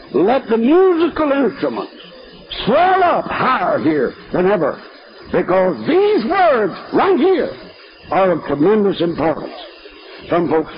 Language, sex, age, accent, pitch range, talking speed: English, male, 60-79, American, 170-275 Hz, 115 wpm